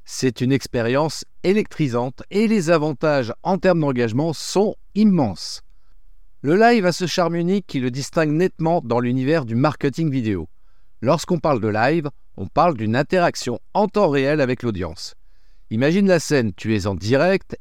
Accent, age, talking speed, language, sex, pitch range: French, 50-69, 160 wpm, French, male, 120-180 Hz